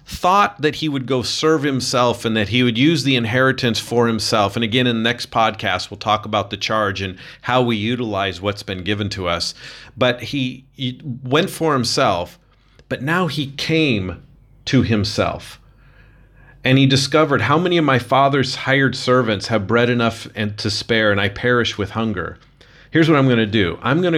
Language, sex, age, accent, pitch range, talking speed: English, male, 40-59, American, 105-130 Hz, 190 wpm